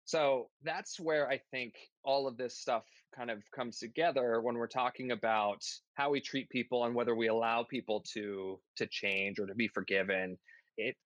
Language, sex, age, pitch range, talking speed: English, male, 20-39, 110-130 Hz, 185 wpm